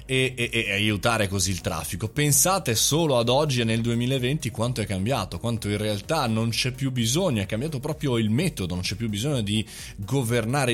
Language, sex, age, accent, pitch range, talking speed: Italian, male, 20-39, native, 105-155 Hz, 195 wpm